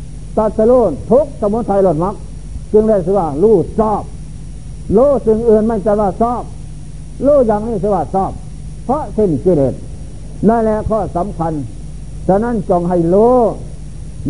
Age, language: 60-79, Thai